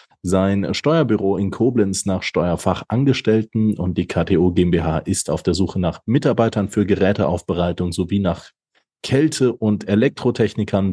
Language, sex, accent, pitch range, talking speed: German, male, German, 90-120 Hz, 125 wpm